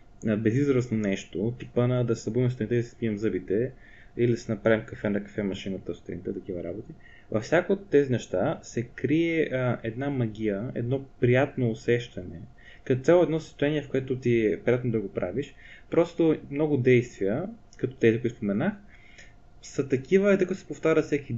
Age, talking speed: 20-39, 170 wpm